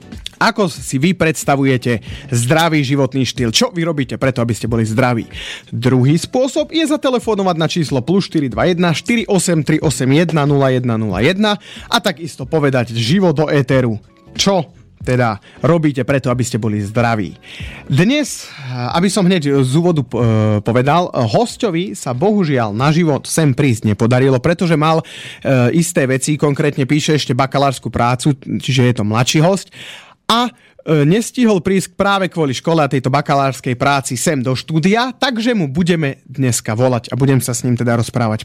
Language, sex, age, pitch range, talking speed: Slovak, male, 30-49, 125-170 Hz, 145 wpm